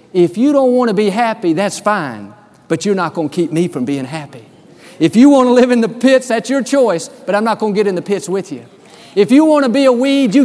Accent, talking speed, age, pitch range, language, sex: American, 280 wpm, 50-69, 165-230 Hz, English, male